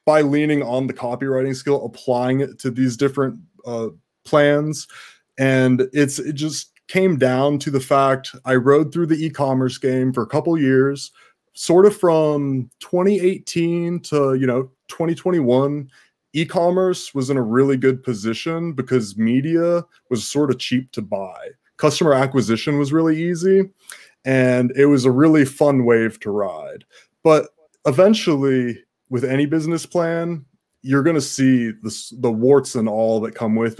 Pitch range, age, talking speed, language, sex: 125-145 Hz, 20-39, 155 wpm, English, male